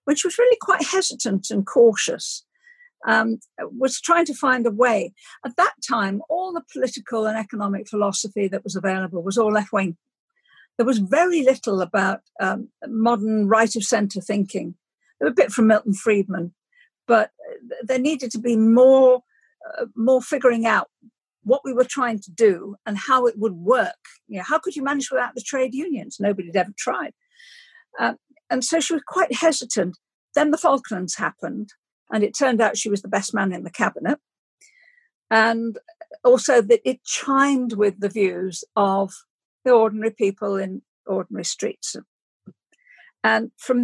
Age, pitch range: 50-69, 210-290 Hz